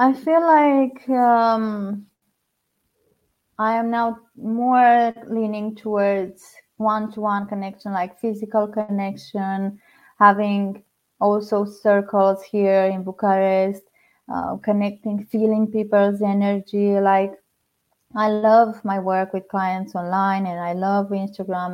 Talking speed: 105 wpm